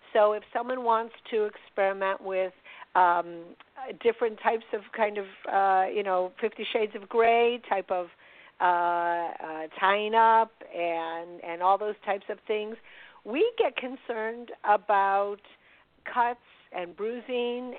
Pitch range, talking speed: 190-235 Hz, 135 wpm